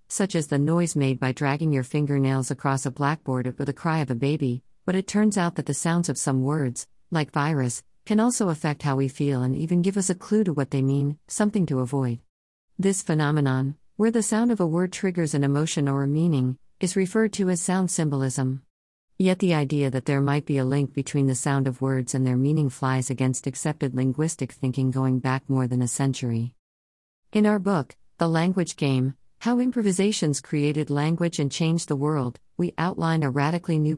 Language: English